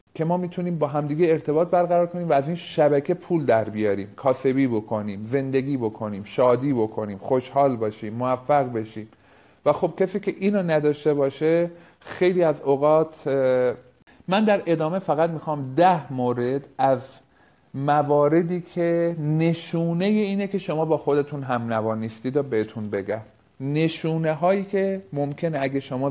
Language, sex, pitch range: Persian, male, 125-165 Hz